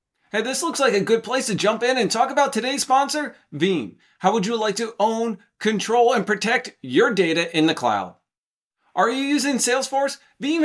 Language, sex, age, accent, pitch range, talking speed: English, male, 40-59, American, 190-255 Hz, 195 wpm